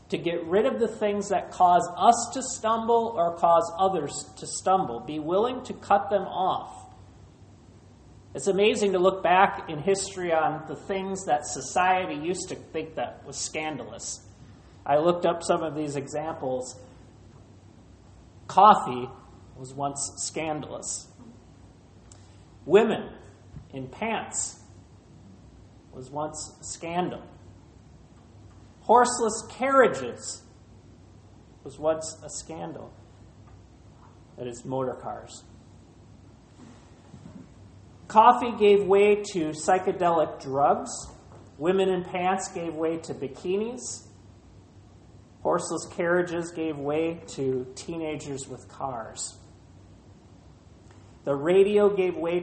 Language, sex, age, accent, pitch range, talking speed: English, male, 30-49, American, 115-190 Hz, 105 wpm